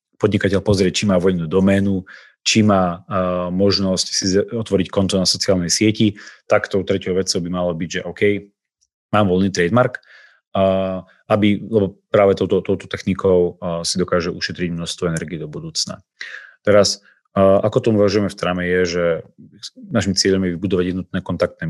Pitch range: 90-95 Hz